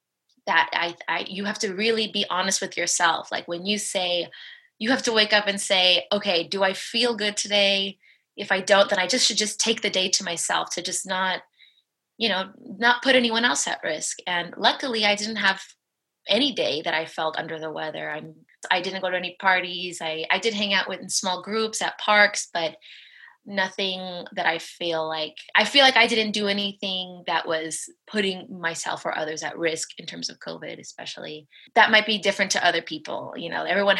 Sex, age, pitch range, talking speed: female, 20-39, 175-215 Hz, 210 wpm